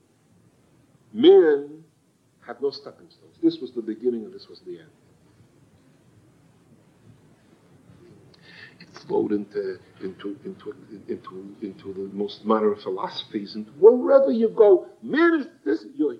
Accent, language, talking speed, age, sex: American, English, 125 wpm, 60-79, male